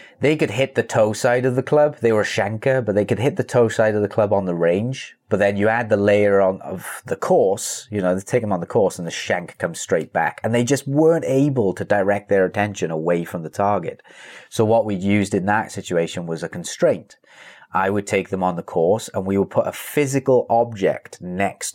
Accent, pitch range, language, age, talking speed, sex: British, 90-115 Hz, English, 30-49, 245 wpm, male